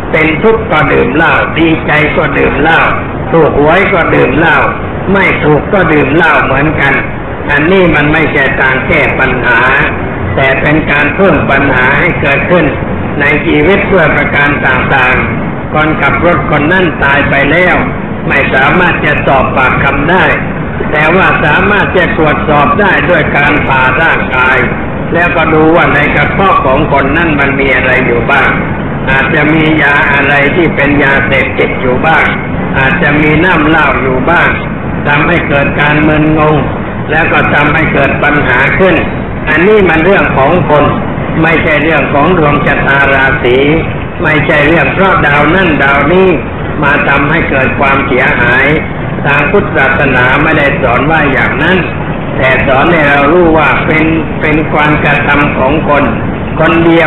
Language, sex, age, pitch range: Thai, male, 60-79, 140-160 Hz